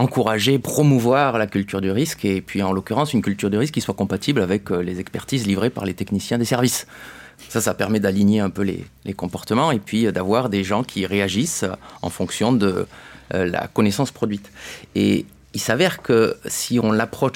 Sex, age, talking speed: male, 30-49, 190 wpm